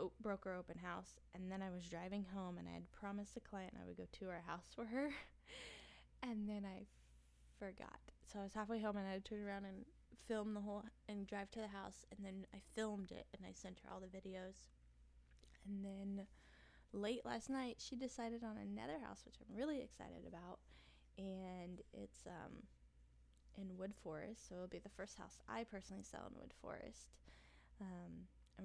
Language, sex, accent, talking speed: English, female, American, 200 wpm